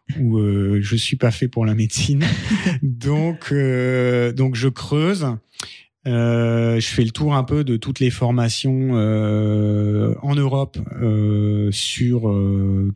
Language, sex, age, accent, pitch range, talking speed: French, male, 30-49, French, 105-125 Hz, 145 wpm